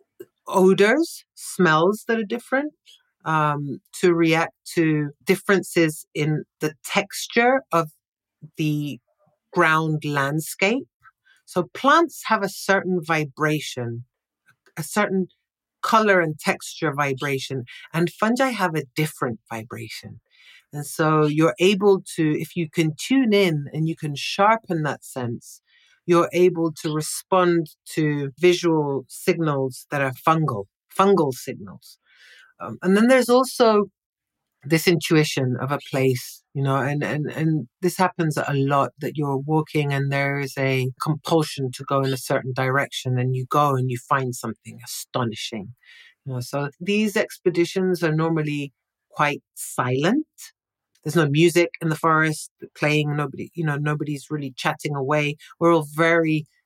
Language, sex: English, female